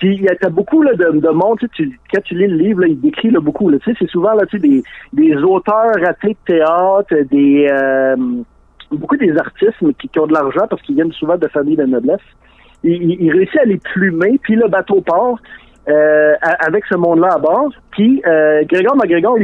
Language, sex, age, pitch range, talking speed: French, male, 50-69, 160-235 Hz, 215 wpm